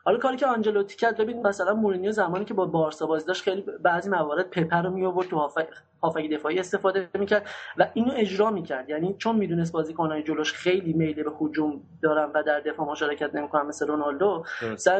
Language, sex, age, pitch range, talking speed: Persian, male, 30-49, 160-205 Hz, 190 wpm